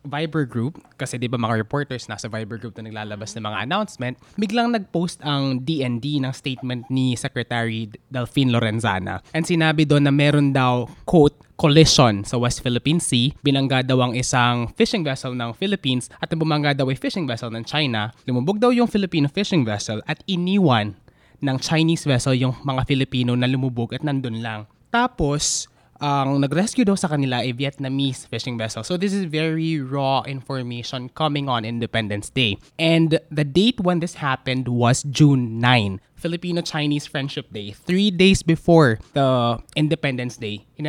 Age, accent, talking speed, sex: 20-39, Filipino, 165 wpm, male